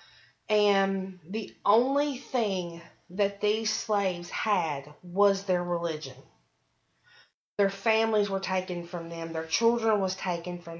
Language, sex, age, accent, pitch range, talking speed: English, female, 30-49, American, 170-195 Hz, 120 wpm